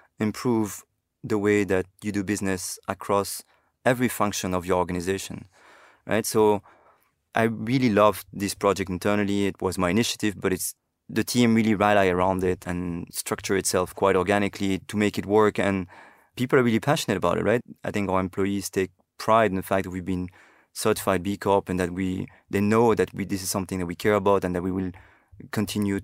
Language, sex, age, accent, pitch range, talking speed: English, male, 20-39, French, 95-110 Hz, 190 wpm